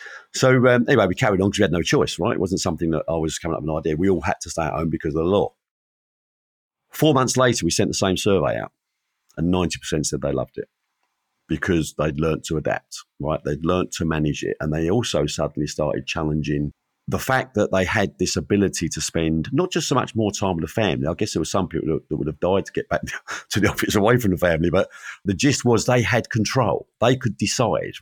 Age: 50-69